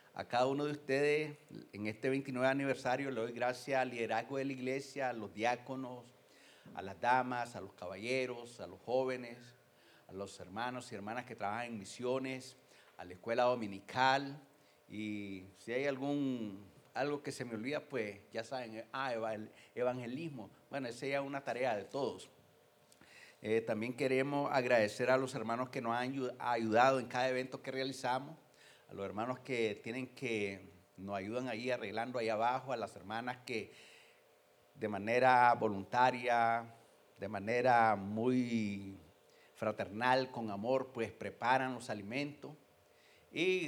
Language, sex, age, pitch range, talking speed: English, male, 50-69, 110-130 Hz, 150 wpm